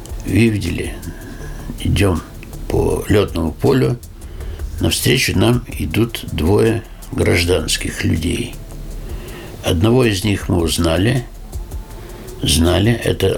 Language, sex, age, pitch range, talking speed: Russian, male, 60-79, 85-110 Hz, 85 wpm